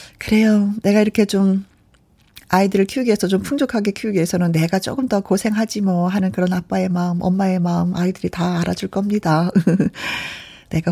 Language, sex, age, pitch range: Korean, female, 40-59, 180-250 Hz